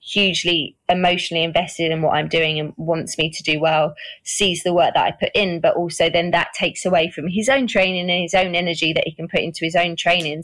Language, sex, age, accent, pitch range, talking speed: English, female, 20-39, British, 160-185 Hz, 240 wpm